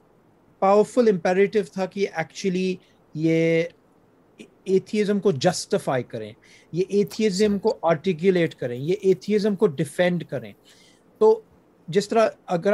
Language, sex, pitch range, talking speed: Urdu, male, 160-200 Hz, 115 wpm